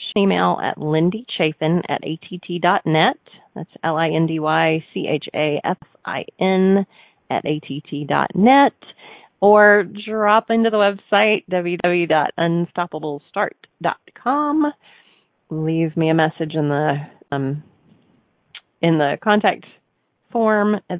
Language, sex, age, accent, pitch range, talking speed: English, female, 30-49, American, 155-190 Hz, 75 wpm